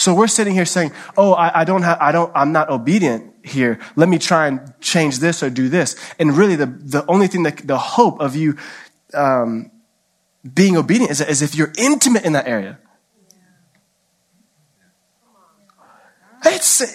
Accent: American